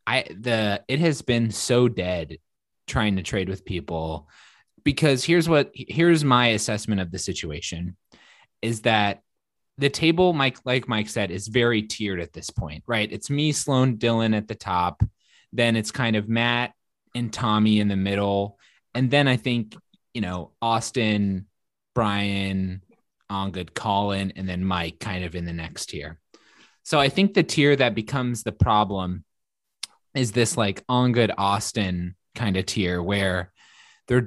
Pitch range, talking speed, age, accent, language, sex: 100-130 Hz, 165 wpm, 20-39, American, English, male